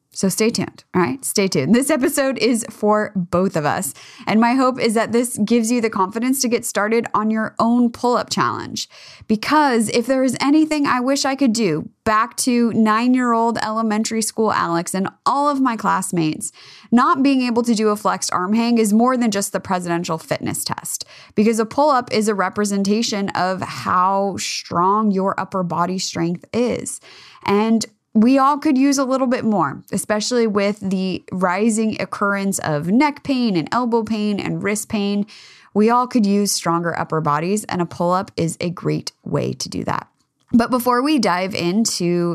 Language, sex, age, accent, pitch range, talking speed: English, female, 20-39, American, 190-240 Hz, 190 wpm